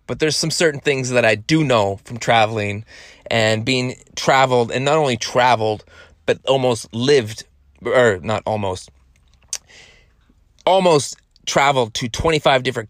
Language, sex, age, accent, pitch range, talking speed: English, male, 30-49, American, 100-130 Hz, 135 wpm